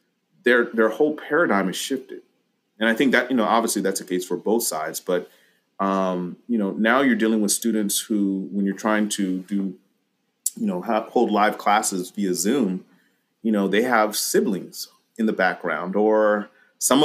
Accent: American